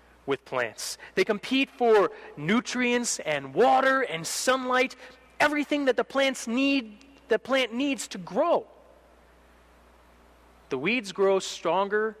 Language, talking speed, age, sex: English, 120 wpm, 30-49, male